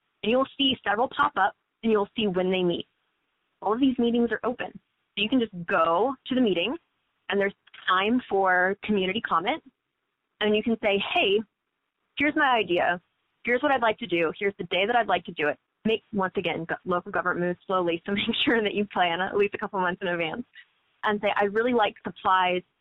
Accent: American